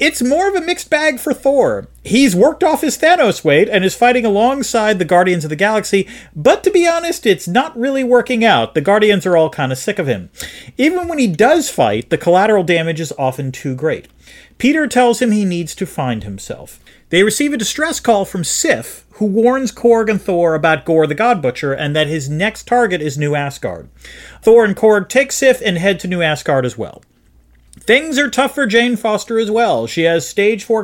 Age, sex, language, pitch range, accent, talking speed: 40-59, male, English, 160-255 Hz, American, 215 wpm